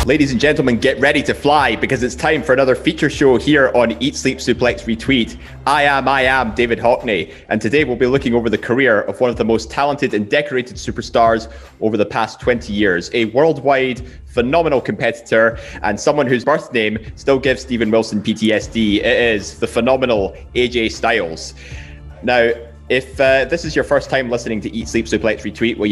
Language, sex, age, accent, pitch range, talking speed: English, male, 20-39, British, 105-120 Hz, 190 wpm